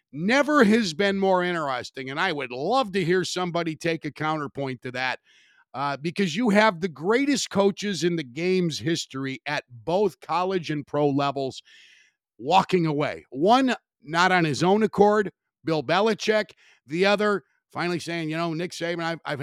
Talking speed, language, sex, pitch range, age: 165 wpm, English, male, 145-200 Hz, 50-69